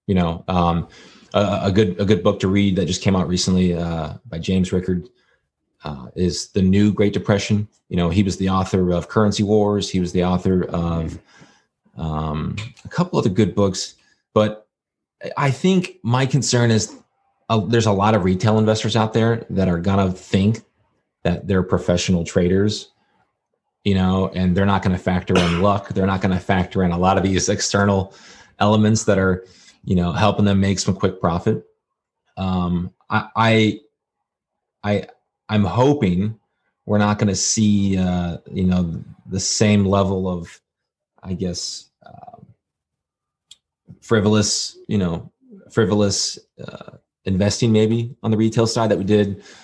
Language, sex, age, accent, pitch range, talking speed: English, male, 30-49, American, 90-110 Hz, 165 wpm